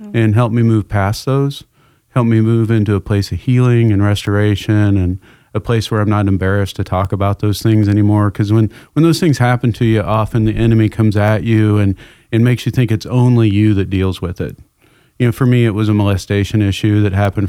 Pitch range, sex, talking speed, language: 100-115 Hz, male, 225 wpm, English